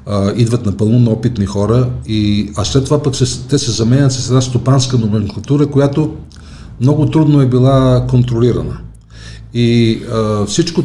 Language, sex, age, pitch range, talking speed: Bulgarian, male, 50-69, 110-130 Hz, 135 wpm